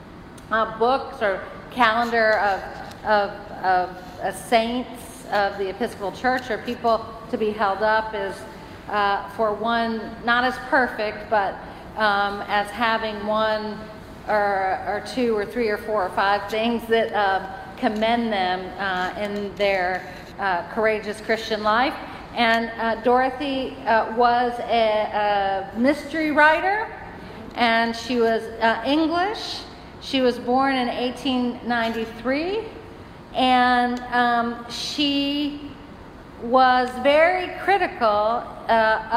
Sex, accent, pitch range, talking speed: female, American, 215-250 Hz, 120 wpm